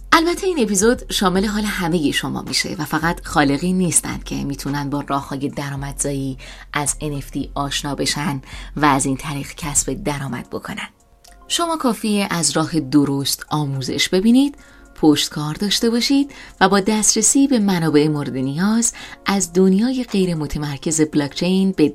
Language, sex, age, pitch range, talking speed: Persian, female, 30-49, 145-205 Hz, 140 wpm